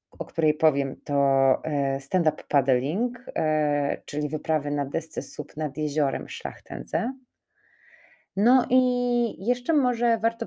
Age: 30-49